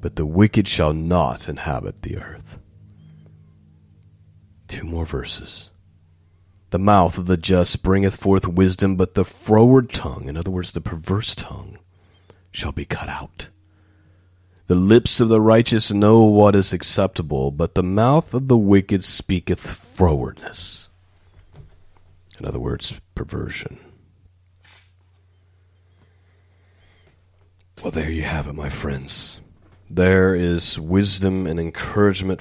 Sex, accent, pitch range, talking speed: male, American, 80-100 Hz, 120 wpm